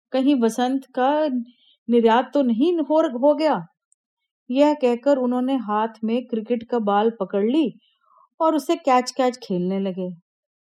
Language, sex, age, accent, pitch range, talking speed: Hindi, female, 30-49, native, 230-305 Hz, 140 wpm